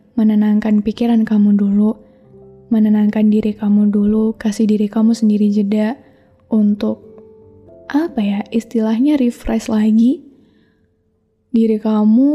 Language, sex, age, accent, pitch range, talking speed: Indonesian, female, 10-29, native, 210-230 Hz, 100 wpm